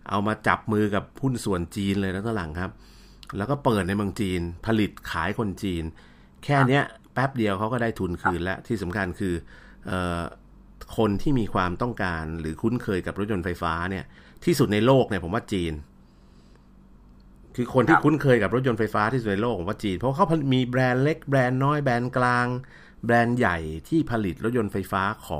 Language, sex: Thai, male